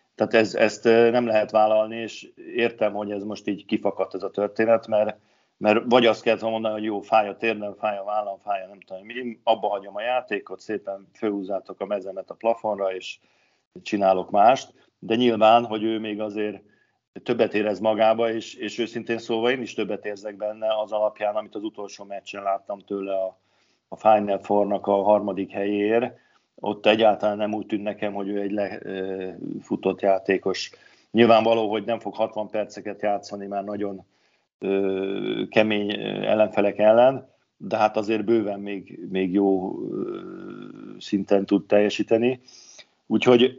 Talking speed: 160 wpm